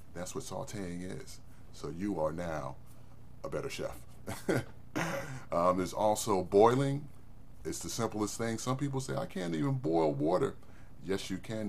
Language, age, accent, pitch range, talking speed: English, 30-49, American, 85-115 Hz, 155 wpm